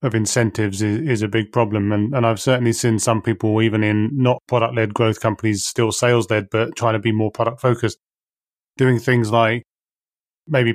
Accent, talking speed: British, 195 wpm